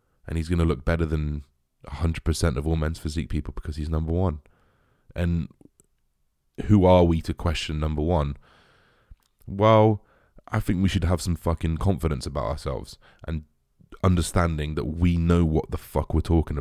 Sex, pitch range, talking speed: male, 75-90 Hz, 165 wpm